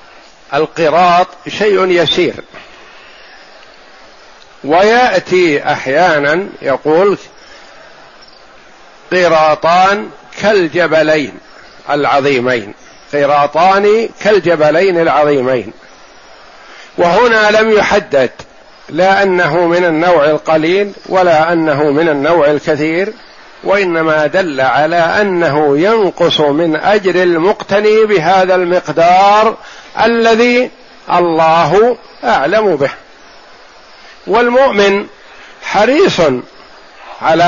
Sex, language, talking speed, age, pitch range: male, Arabic, 65 wpm, 60-79, 165-205 Hz